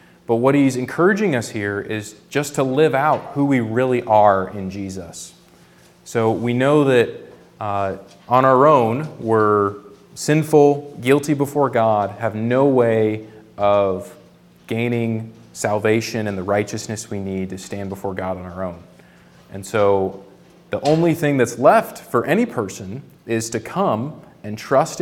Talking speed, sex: 150 wpm, male